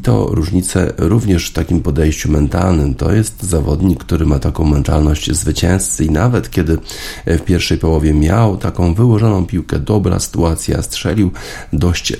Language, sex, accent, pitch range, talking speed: Polish, male, native, 75-100 Hz, 150 wpm